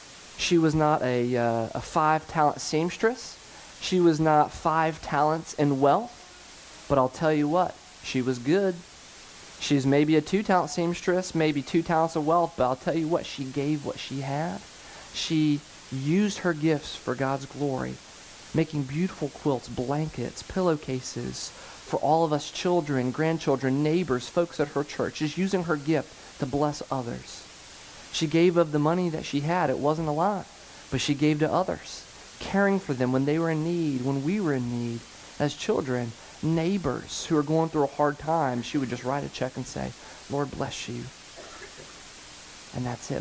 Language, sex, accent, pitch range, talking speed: English, male, American, 130-165 Hz, 175 wpm